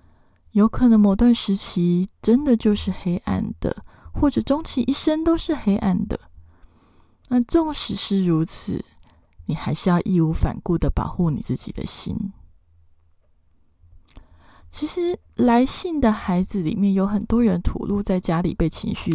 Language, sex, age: Chinese, female, 20-39